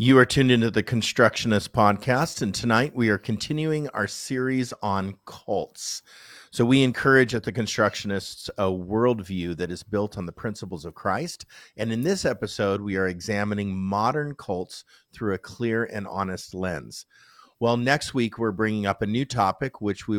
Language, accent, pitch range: English, American, 100-125 Hz